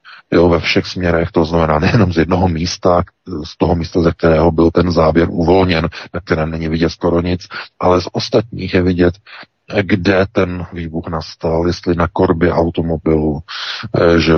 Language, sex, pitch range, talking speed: Czech, male, 85-95 Hz, 165 wpm